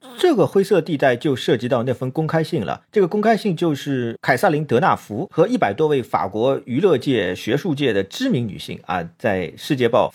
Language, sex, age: Chinese, male, 40-59